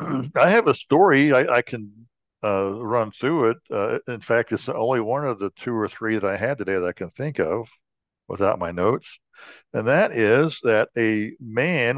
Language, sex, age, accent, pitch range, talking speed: English, male, 60-79, American, 105-135 Hz, 200 wpm